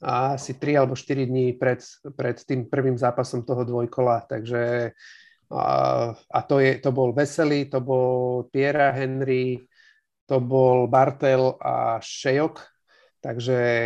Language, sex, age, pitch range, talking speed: Slovak, male, 40-59, 125-145 Hz, 135 wpm